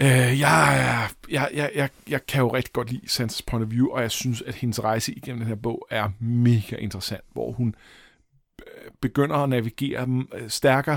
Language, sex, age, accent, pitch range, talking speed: Danish, male, 50-69, native, 120-145 Hz, 180 wpm